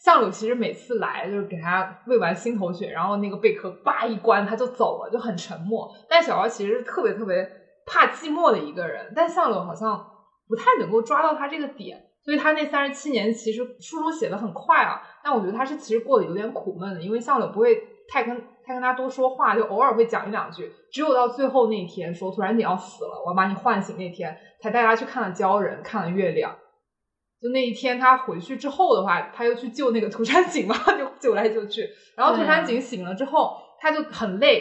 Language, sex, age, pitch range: Chinese, female, 20-39, 200-270 Hz